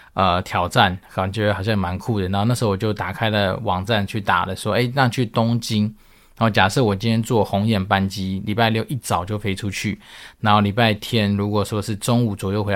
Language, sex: Chinese, male